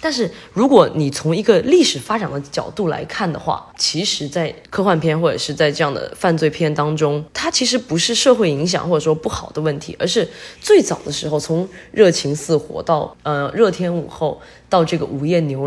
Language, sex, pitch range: Chinese, female, 155-230 Hz